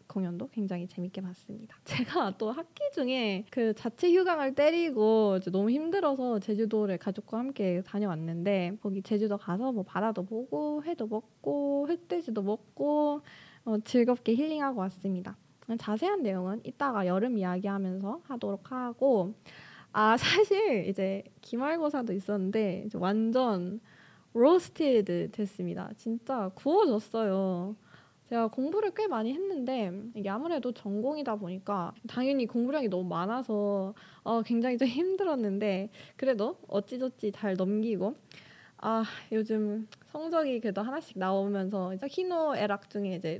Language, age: Korean, 20-39